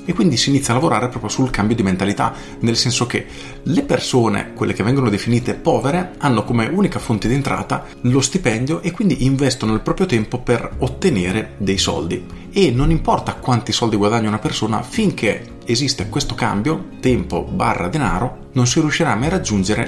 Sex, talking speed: male, 180 wpm